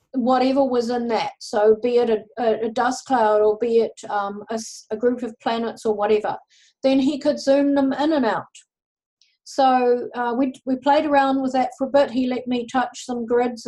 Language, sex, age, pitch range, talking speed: English, female, 50-69, 225-265 Hz, 205 wpm